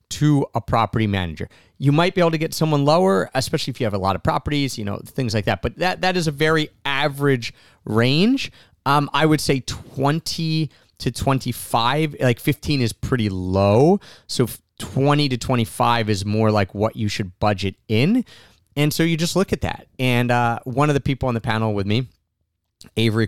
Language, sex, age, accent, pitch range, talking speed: English, male, 30-49, American, 110-145 Hz, 195 wpm